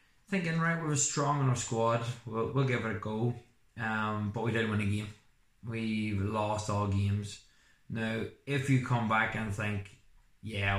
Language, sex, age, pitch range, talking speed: English, male, 20-39, 105-115 Hz, 185 wpm